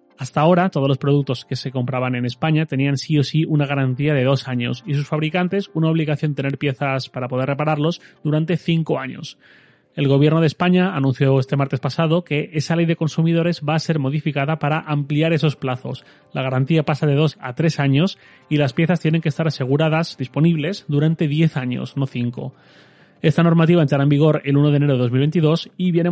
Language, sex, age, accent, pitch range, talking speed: Spanish, male, 30-49, Spanish, 135-160 Hz, 200 wpm